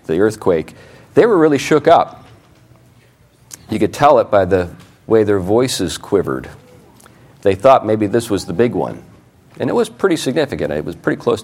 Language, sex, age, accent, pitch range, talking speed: English, male, 50-69, American, 100-125 Hz, 180 wpm